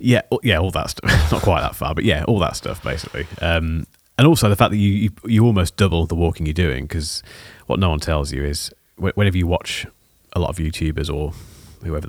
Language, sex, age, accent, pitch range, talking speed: English, male, 30-49, British, 80-100 Hz, 225 wpm